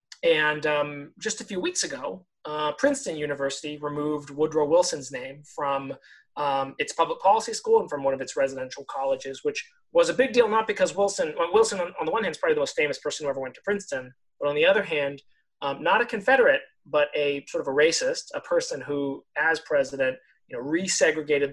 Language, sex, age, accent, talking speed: English, male, 30-49, American, 210 wpm